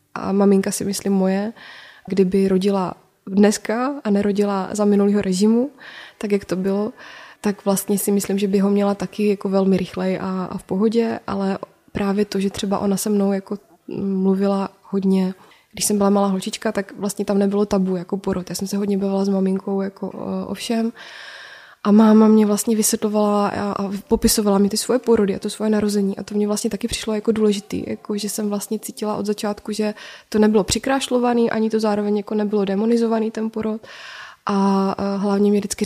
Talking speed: 185 wpm